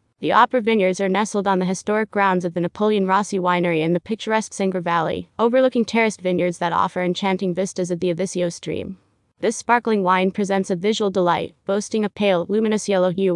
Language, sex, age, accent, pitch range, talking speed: English, female, 20-39, American, 180-210 Hz, 195 wpm